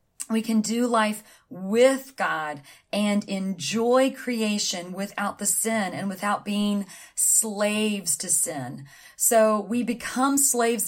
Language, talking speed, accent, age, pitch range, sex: English, 120 wpm, American, 40-59, 190-220 Hz, female